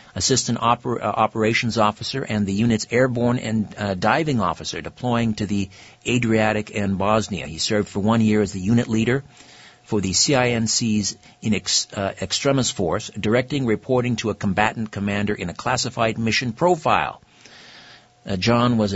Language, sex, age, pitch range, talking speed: English, male, 50-69, 105-130 Hz, 150 wpm